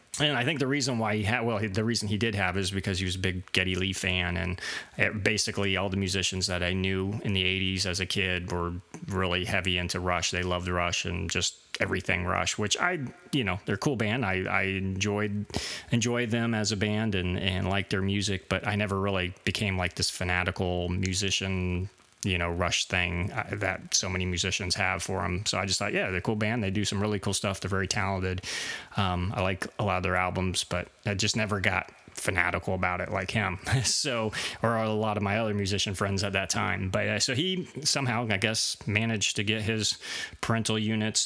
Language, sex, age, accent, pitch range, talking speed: English, male, 30-49, American, 95-110 Hz, 220 wpm